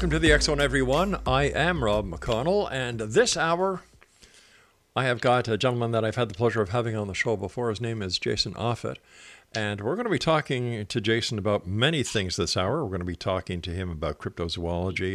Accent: American